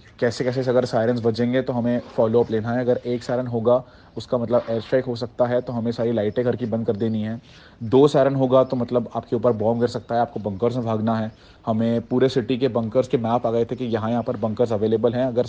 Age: 30-49